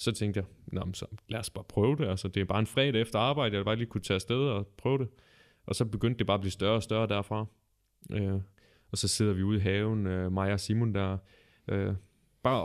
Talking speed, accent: 250 wpm, native